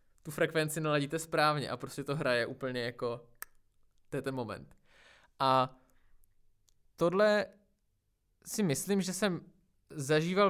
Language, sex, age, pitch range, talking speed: Czech, male, 20-39, 135-160 Hz, 120 wpm